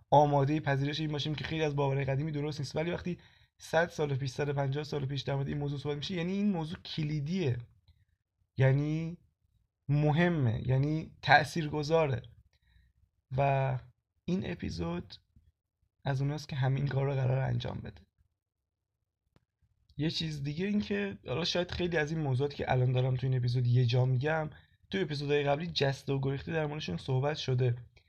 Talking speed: 155 wpm